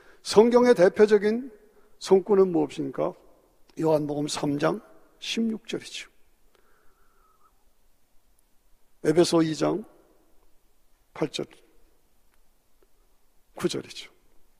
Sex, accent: male, native